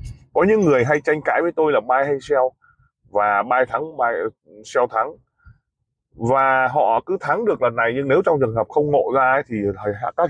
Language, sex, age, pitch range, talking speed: Vietnamese, male, 20-39, 115-160 Hz, 210 wpm